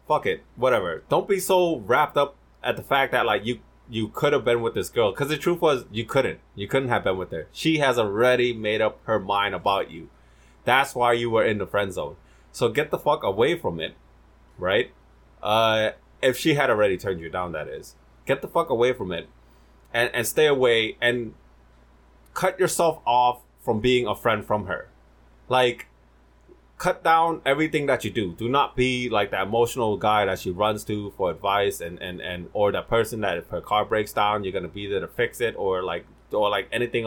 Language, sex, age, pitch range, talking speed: English, male, 20-39, 95-135 Hz, 215 wpm